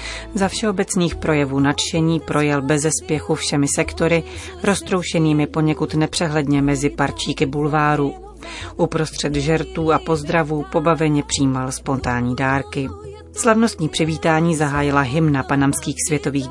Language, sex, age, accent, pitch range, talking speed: Czech, female, 30-49, native, 145-165 Hz, 105 wpm